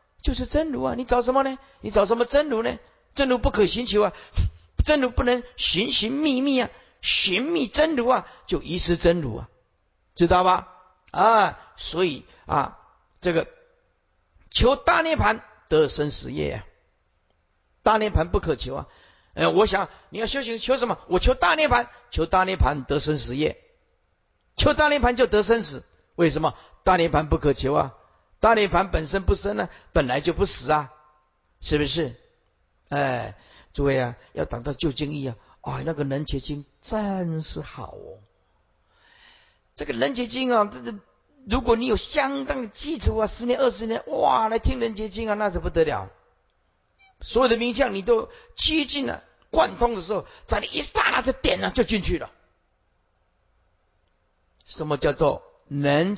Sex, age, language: male, 50-69, Chinese